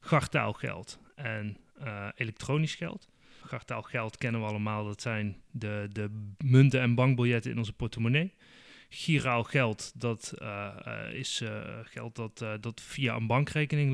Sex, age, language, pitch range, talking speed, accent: male, 30-49, Dutch, 115-135 Hz, 145 wpm, Dutch